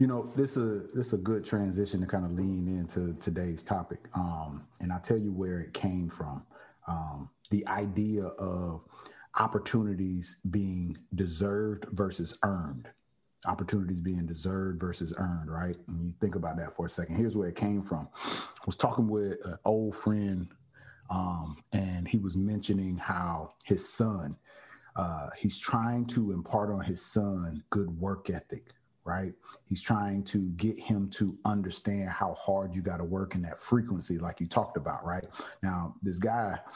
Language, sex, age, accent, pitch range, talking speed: English, male, 30-49, American, 90-110 Hz, 170 wpm